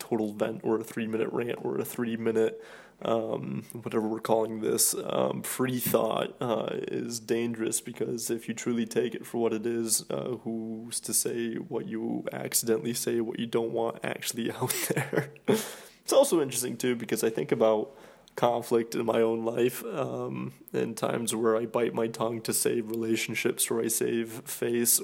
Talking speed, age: 180 wpm, 20-39